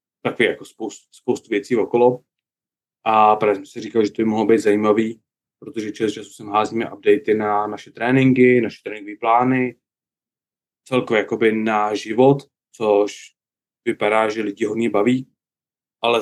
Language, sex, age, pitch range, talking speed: Czech, male, 20-39, 105-125 Hz, 150 wpm